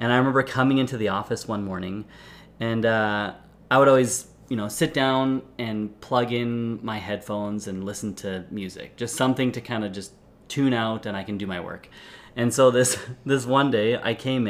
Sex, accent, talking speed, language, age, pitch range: male, American, 205 wpm, English, 30-49, 105-140 Hz